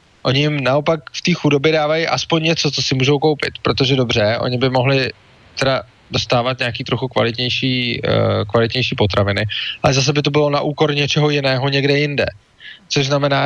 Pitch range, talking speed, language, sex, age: 125-150 Hz, 175 wpm, English, male, 20-39